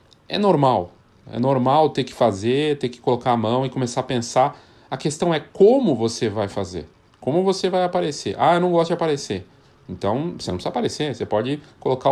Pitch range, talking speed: 115-155 Hz, 205 wpm